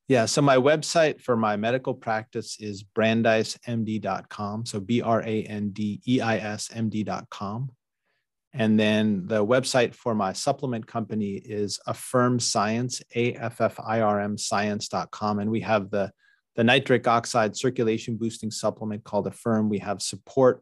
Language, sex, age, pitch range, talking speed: English, male, 30-49, 105-125 Hz, 155 wpm